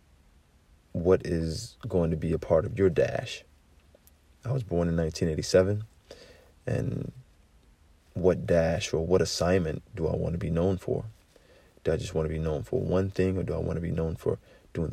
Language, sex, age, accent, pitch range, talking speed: English, male, 40-59, American, 80-90 Hz, 190 wpm